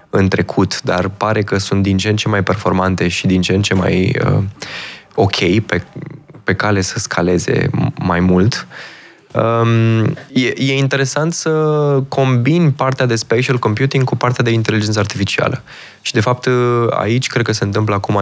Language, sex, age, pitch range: Romanian, male, 20-39, 95-115 Hz